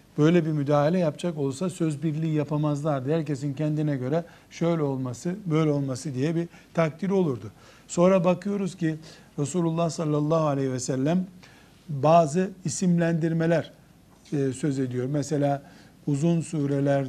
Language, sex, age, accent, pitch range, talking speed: Turkish, male, 60-79, native, 145-175 Hz, 120 wpm